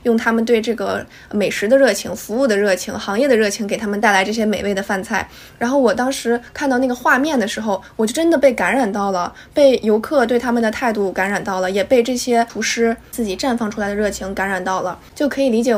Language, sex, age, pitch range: Chinese, female, 20-39, 200-245 Hz